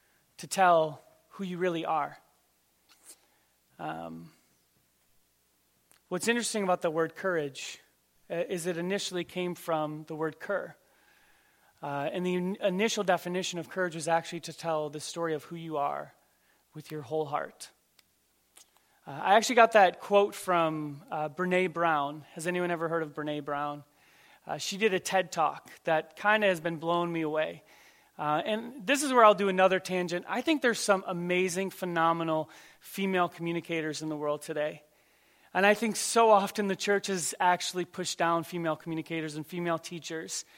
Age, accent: 30-49, American